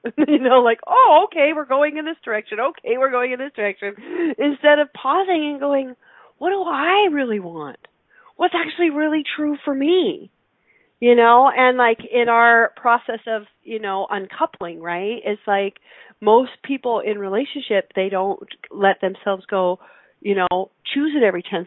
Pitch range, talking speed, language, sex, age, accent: 200-270 Hz, 170 wpm, English, female, 40-59, American